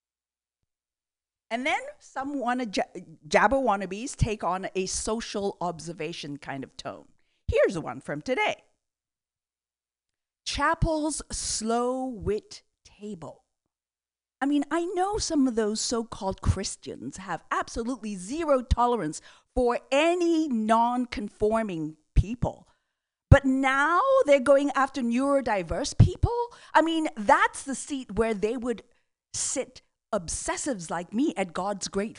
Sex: female